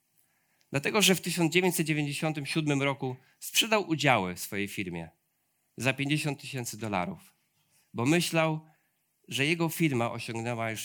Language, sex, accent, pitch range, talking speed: Polish, male, native, 120-155 Hz, 115 wpm